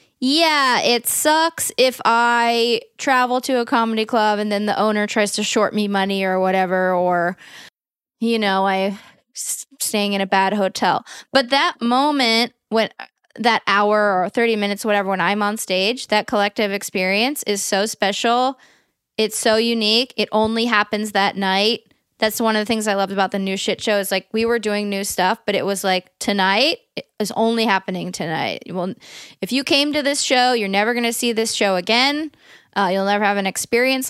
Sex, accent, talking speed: female, American, 190 wpm